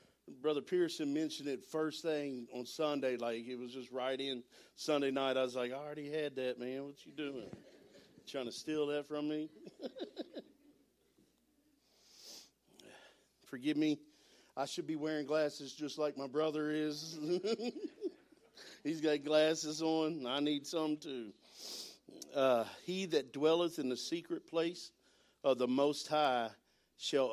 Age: 50-69